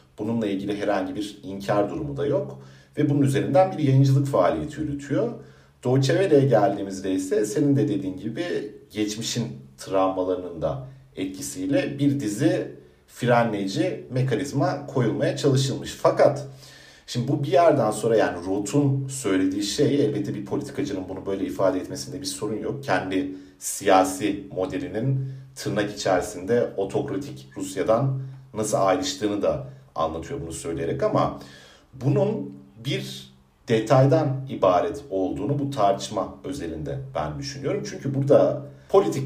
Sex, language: male, Turkish